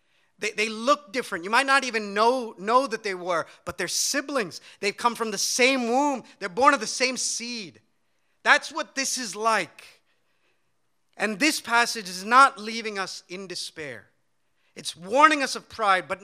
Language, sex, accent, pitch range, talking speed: English, male, American, 175-255 Hz, 175 wpm